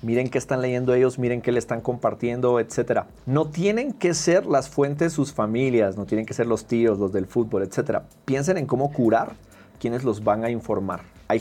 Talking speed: 205 wpm